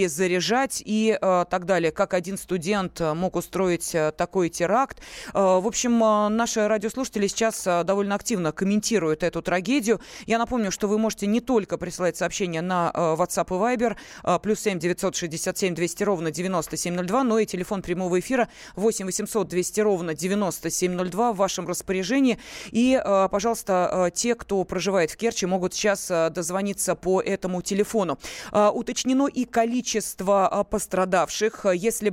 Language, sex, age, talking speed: Russian, female, 30-49, 155 wpm